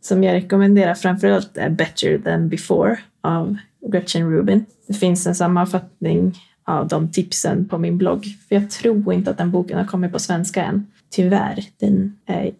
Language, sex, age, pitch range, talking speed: English, female, 20-39, 175-200 Hz, 170 wpm